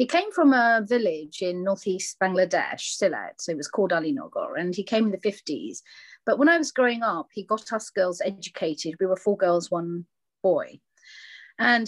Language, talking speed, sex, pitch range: English, 195 wpm, female, 190-280 Hz